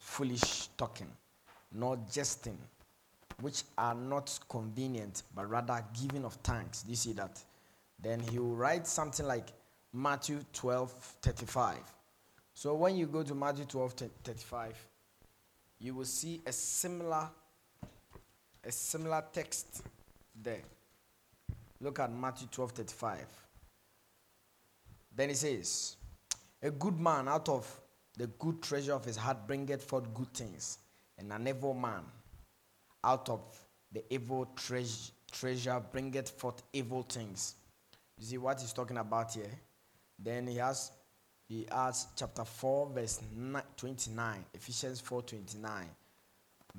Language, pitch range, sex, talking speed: English, 110-135 Hz, male, 130 wpm